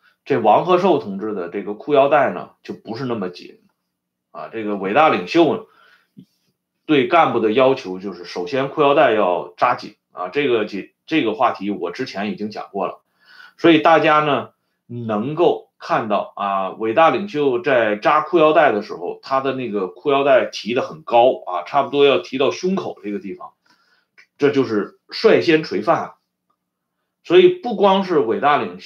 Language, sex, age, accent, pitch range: Swedish, male, 30-49, Chinese, 100-165 Hz